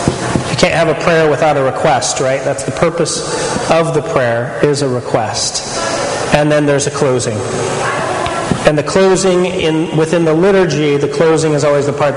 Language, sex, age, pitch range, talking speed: English, male, 30-49, 135-165 Hz, 175 wpm